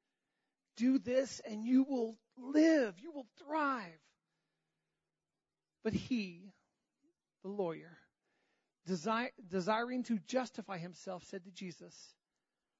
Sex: male